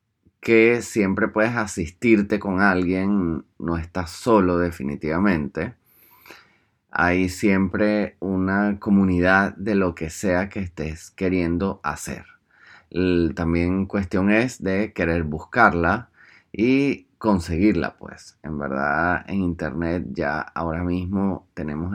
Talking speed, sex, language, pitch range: 105 wpm, male, Spanish, 85-105 Hz